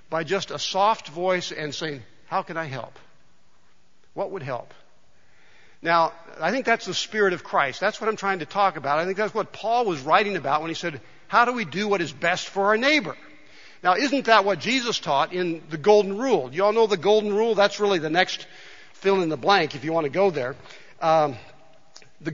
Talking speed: 215 wpm